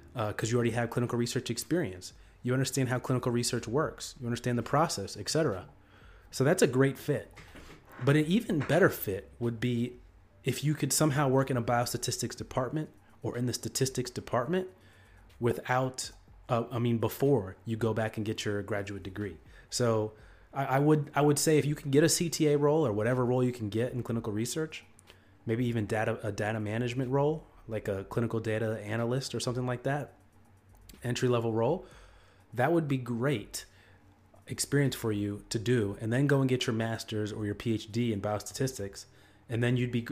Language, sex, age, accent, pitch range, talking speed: English, male, 30-49, American, 105-130 Hz, 185 wpm